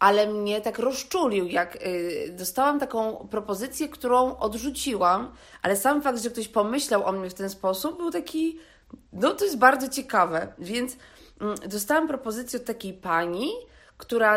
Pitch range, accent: 185-235 Hz, native